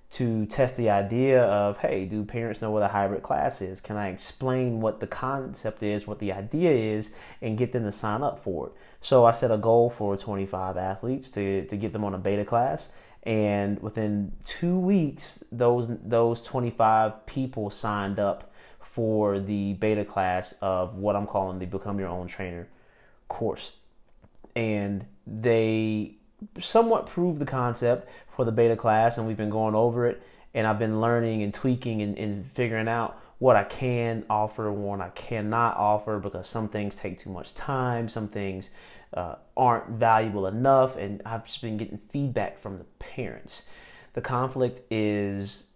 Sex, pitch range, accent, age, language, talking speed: male, 100-115 Hz, American, 30-49, English, 175 wpm